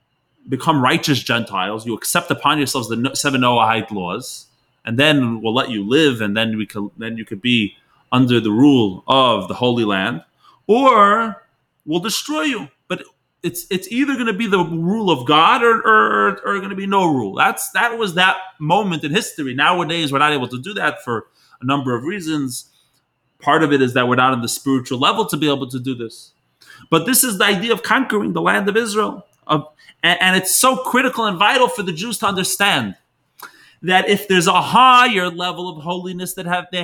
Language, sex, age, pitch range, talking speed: English, male, 30-49, 140-205 Hz, 205 wpm